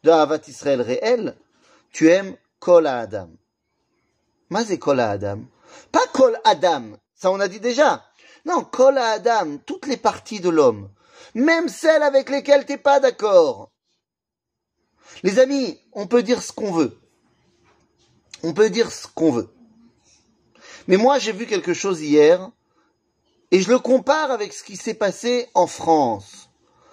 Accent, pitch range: French, 160-250 Hz